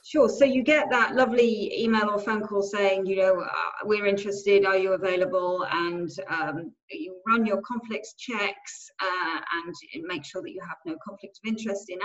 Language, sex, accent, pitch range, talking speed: English, female, British, 195-240 Hz, 190 wpm